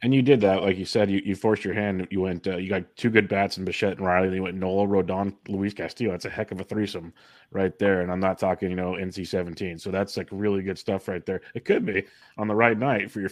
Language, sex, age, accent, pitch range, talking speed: English, male, 30-49, American, 95-105 Hz, 280 wpm